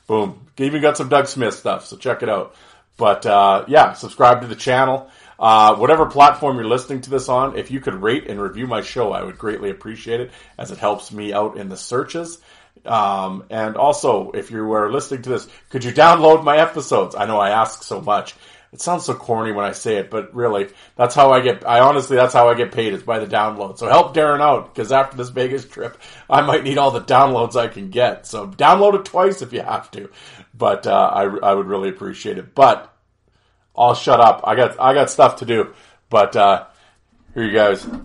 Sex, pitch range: male, 110-140 Hz